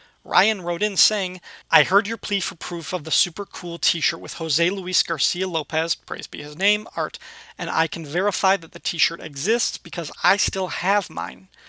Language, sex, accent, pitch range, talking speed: English, male, American, 160-195 Hz, 205 wpm